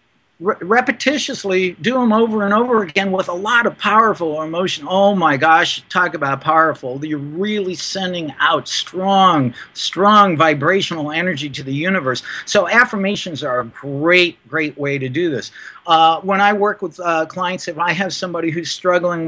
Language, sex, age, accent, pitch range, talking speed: English, male, 50-69, American, 155-195 Hz, 165 wpm